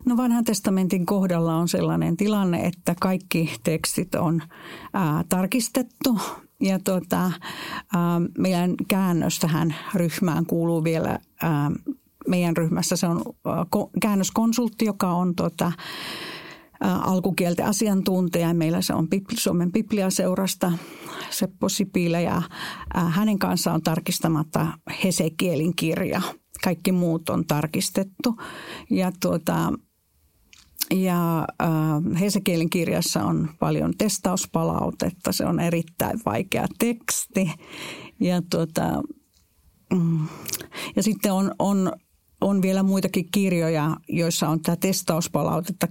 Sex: female